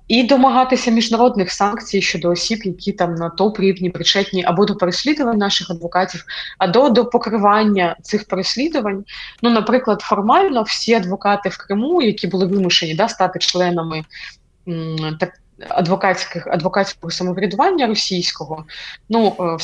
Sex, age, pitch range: female, 20-39, 180-230 Hz